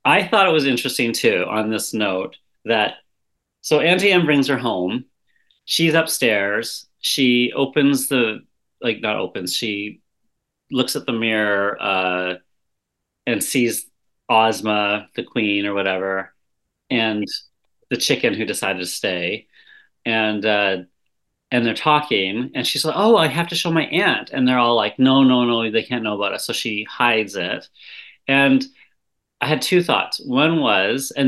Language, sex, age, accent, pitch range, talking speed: English, male, 40-59, American, 105-140 Hz, 160 wpm